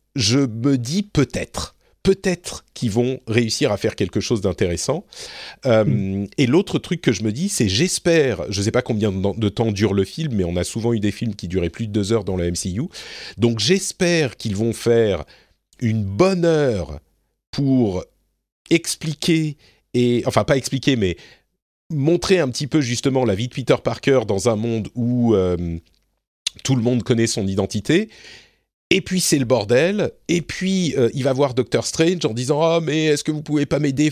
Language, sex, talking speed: French, male, 190 wpm